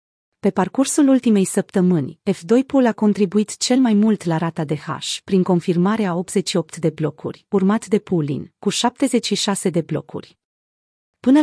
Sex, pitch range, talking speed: female, 175-220 Hz, 145 wpm